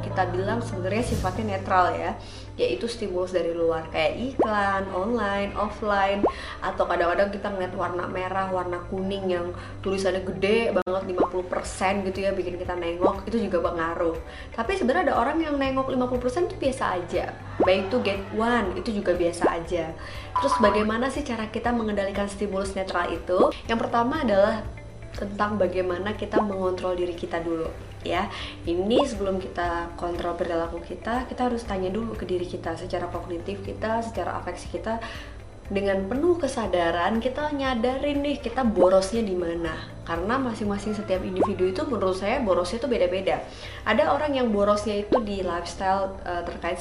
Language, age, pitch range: Indonesian, 20-39, 175-230 Hz